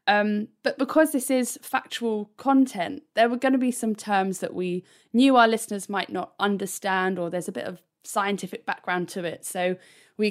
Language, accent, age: English, British, 20-39